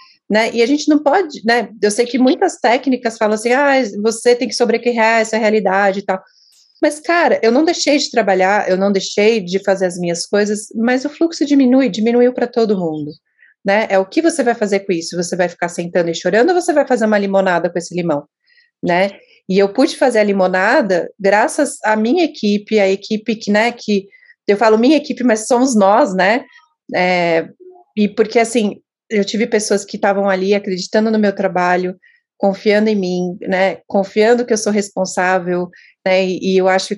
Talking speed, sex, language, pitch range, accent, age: 195 wpm, female, Portuguese, 190-235 Hz, Brazilian, 30-49